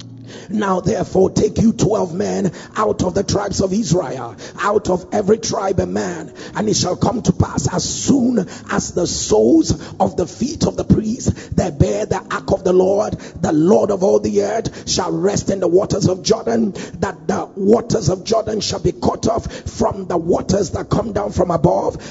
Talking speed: 195 wpm